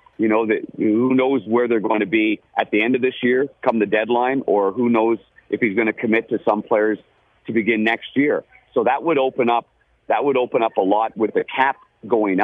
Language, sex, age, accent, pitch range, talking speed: English, male, 50-69, American, 100-125 Hz, 235 wpm